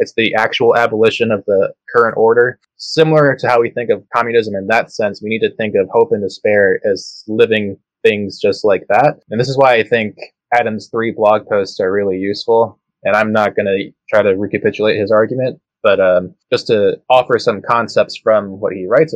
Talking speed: 205 wpm